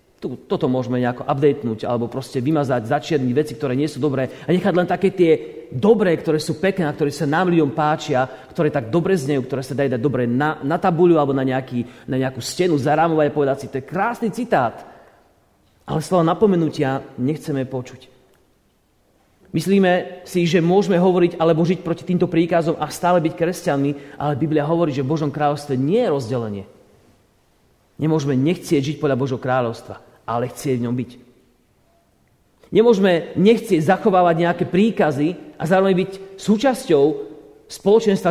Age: 40-59